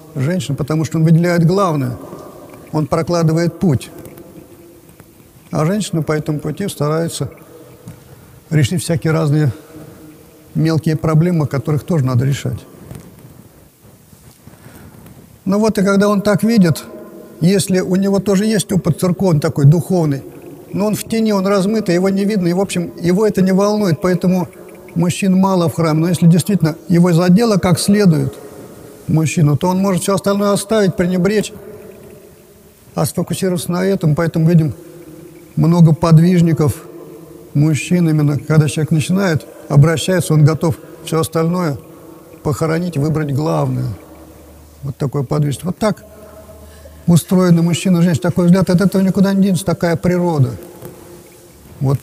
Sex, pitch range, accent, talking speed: male, 155-185 Hz, native, 135 wpm